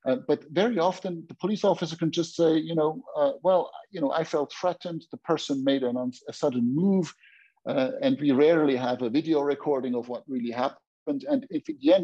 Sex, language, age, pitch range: male, English, 50-69, 120-175 Hz